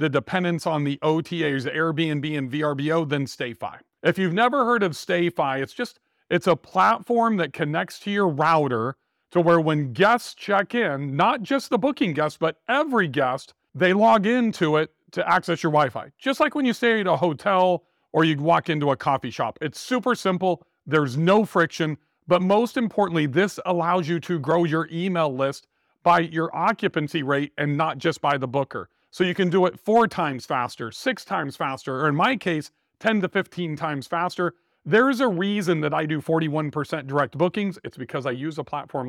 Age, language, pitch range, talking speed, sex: 40-59, English, 145-190 Hz, 195 wpm, male